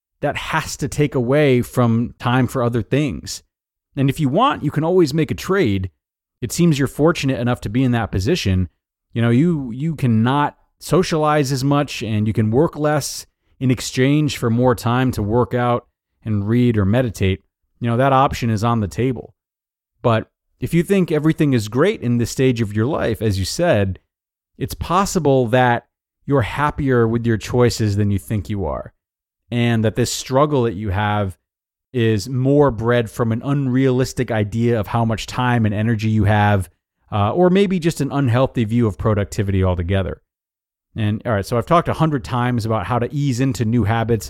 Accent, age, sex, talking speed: American, 30-49, male, 190 wpm